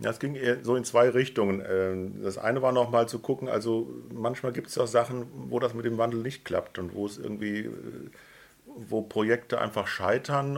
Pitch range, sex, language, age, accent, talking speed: 95-115 Hz, male, German, 50-69, German, 205 wpm